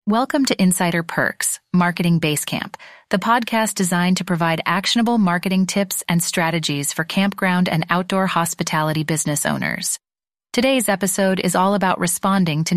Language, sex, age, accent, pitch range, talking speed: English, female, 30-49, American, 170-205 Hz, 140 wpm